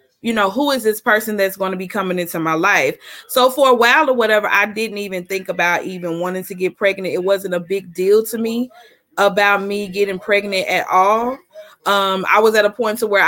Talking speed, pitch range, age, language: 230 wpm, 190-230 Hz, 20-39, English